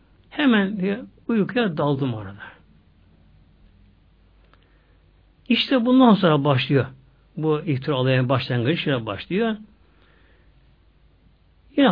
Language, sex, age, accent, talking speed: Turkish, male, 60-79, native, 75 wpm